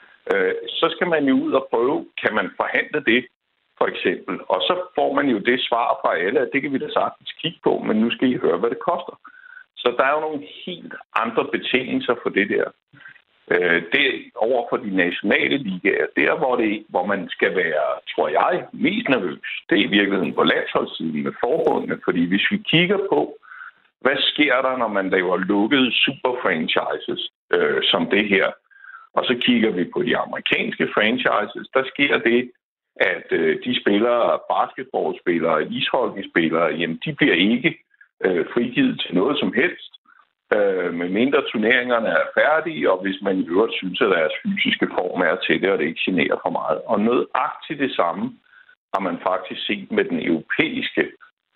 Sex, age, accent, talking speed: male, 60-79, native, 175 wpm